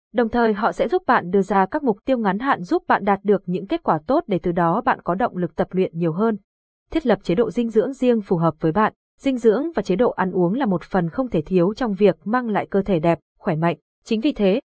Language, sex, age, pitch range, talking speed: Vietnamese, female, 20-39, 185-235 Hz, 280 wpm